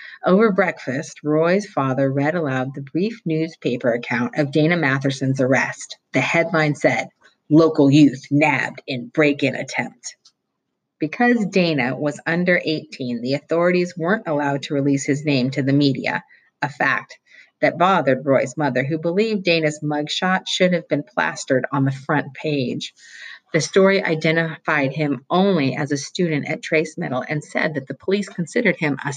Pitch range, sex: 135-170 Hz, female